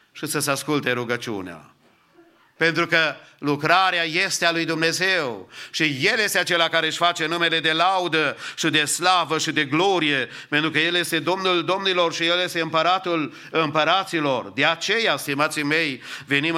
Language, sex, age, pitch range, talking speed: English, male, 50-69, 130-165 Hz, 160 wpm